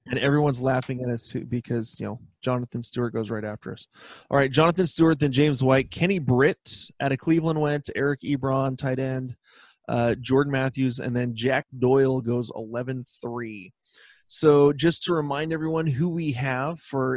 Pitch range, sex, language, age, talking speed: 125-145 Hz, male, English, 20-39, 175 wpm